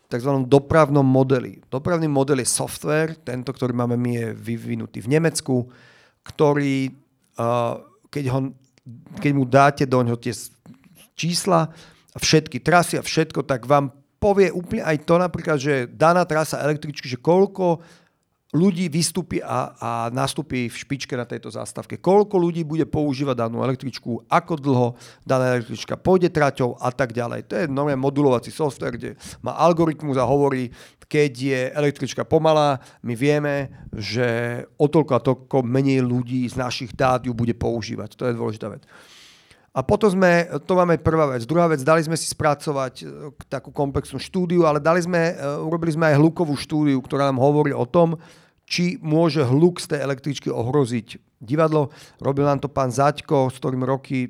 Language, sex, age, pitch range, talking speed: Slovak, male, 40-59, 125-155 Hz, 160 wpm